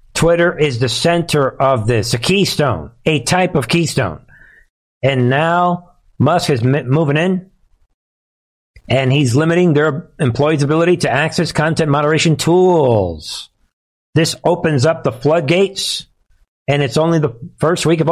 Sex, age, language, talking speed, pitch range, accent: male, 50-69, English, 135 wpm, 135-170 Hz, American